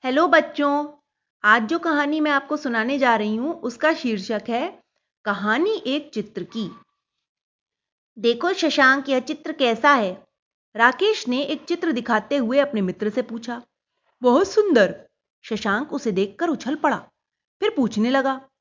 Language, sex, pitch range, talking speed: Hindi, female, 220-310 Hz, 140 wpm